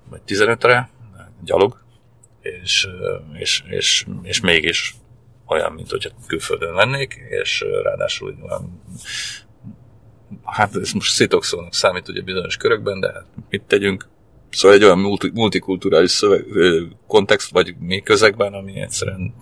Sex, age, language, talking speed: male, 40-59, Hungarian, 120 wpm